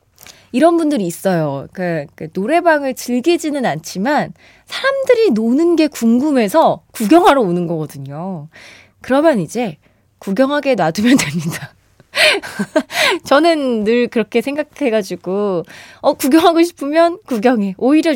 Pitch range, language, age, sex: 190-300 Hz, Korean, 20-39, female